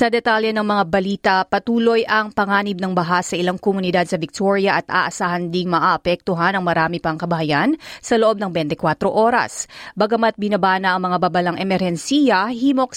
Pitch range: 180-215 Hz